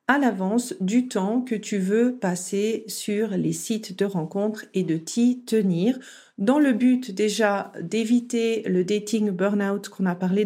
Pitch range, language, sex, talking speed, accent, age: 200-250 Hz, French, female, 170 wpm, French, 40-59